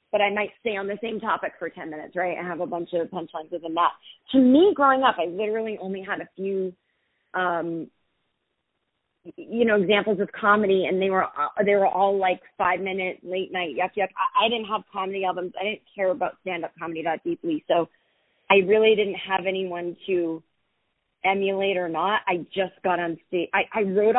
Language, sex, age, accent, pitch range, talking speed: English, female, 30-49, American, 180-220 Hz, 200 wpm